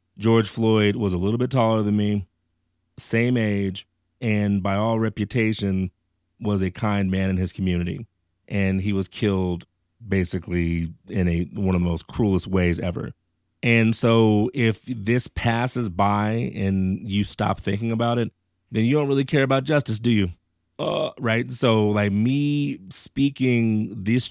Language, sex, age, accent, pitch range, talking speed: English, male, 30-49, American, 95-115 Hz, 160 wpm